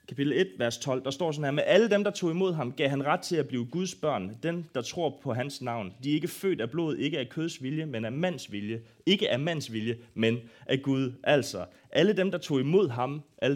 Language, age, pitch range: Danish, 30-49, 120-155 Hz